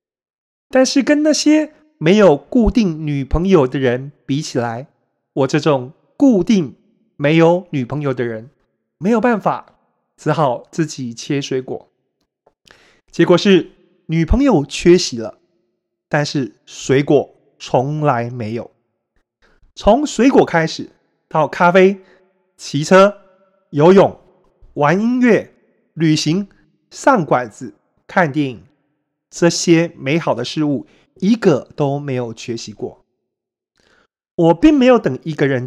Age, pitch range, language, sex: 30-49, 135-190 Hz, Chinese, male